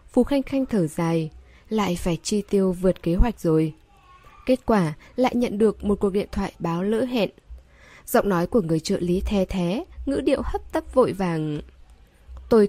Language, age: Vietnamese, 10-29